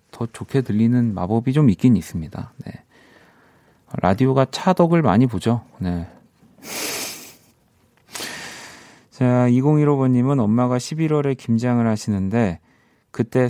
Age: 30-49